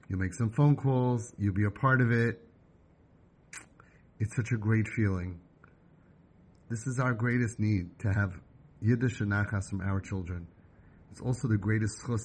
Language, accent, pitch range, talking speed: English, American, 100-120 Hz, 165 wpm